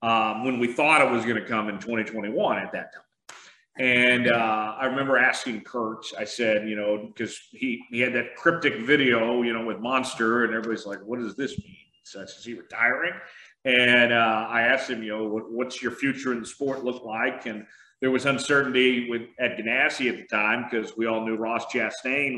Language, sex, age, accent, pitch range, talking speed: English, male, 40-59, American, 110-130 Hz, 210 wpm